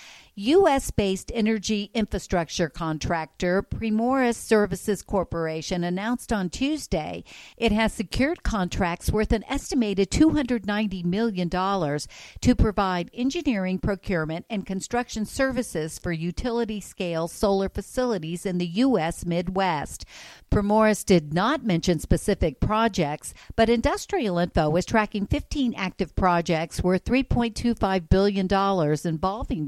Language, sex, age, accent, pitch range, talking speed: English, female, 50-69, American, 170-225 Hz, 105 wpm